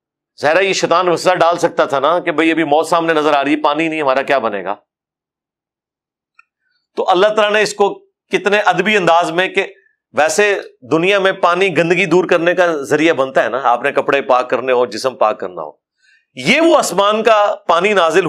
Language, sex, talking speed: Urdu, male, 160 wpm